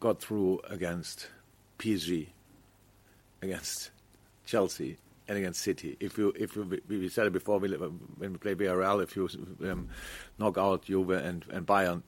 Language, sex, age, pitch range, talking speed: English, male, 50-69, 90-100 Hz, 150 wpm